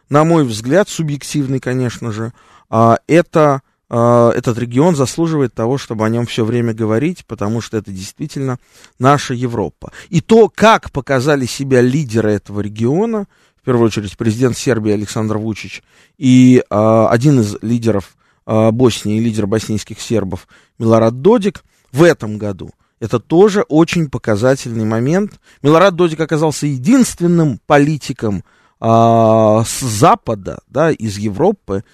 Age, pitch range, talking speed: 20-39, 115-155 Hz, 120 wpm